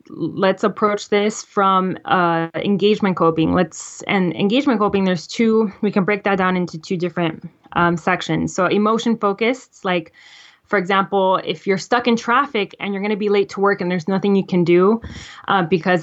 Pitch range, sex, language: 180-210 Hz, female, English